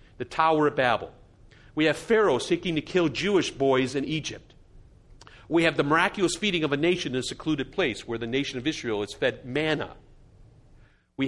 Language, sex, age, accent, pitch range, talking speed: English, male, 50-69, American, 125-190 Hz, 185 wpm